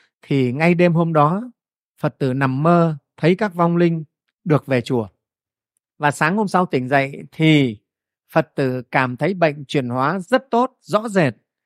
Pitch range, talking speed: 130-170 Hz, 175 wpm